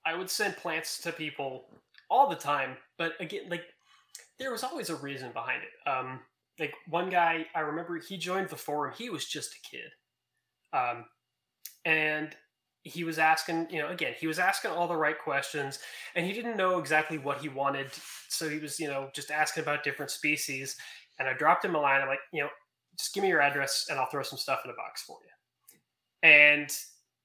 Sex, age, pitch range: male, 20-39, 140-175 Hz